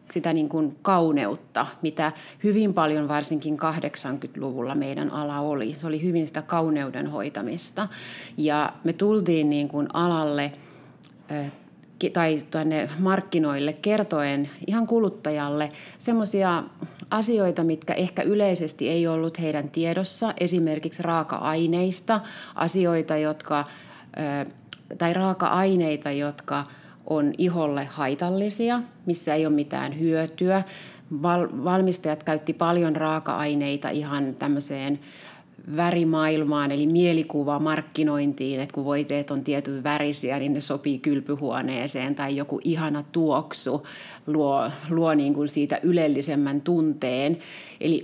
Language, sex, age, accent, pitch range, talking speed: Finnish, female, 30-49, native, 145-170 Hz, 105 wpm